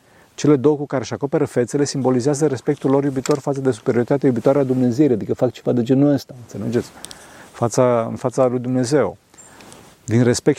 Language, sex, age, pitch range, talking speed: Romanian, male, 40-59, 120-150 Hz, 175 wpm